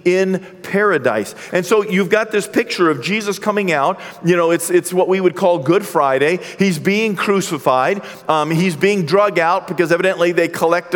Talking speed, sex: 185 wpm, male